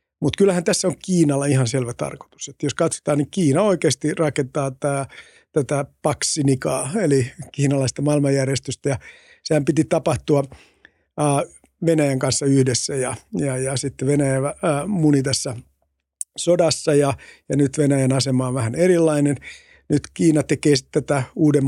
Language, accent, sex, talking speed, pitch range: Finnish, native, male, 135 wpm, 135-155 Hz